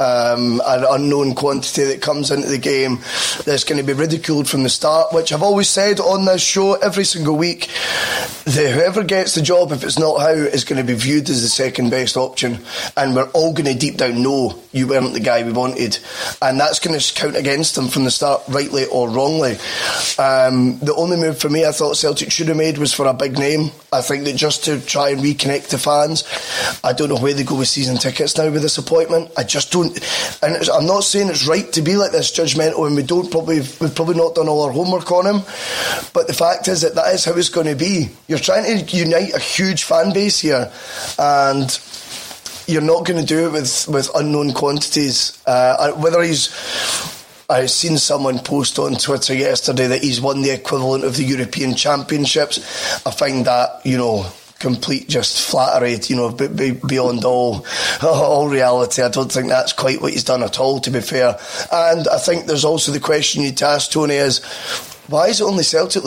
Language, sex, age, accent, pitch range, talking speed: English, male, 20-39, British, 130-160 Hz, 215 wpm